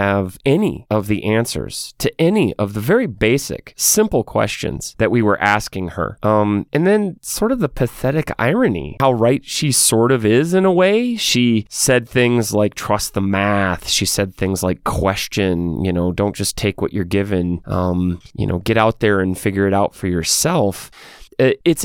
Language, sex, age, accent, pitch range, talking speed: English, male, 30-49, American, 100-130 Hz, 185 wpm